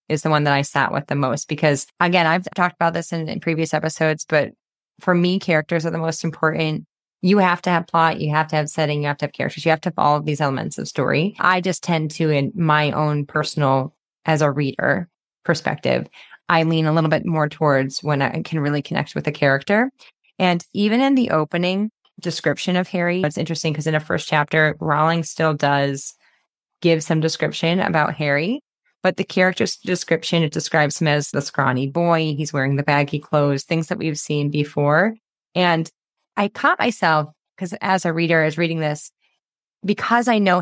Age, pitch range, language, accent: 20-39, 150-175 Hz, English, American